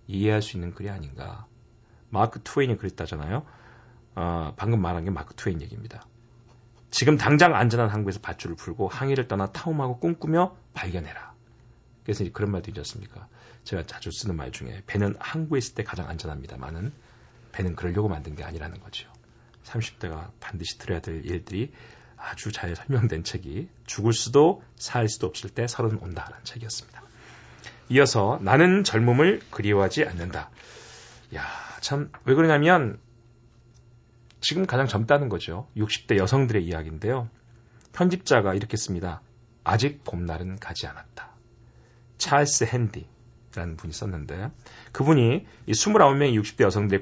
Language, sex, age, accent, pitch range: Korean, male, 40-59, native, 100-125 Hz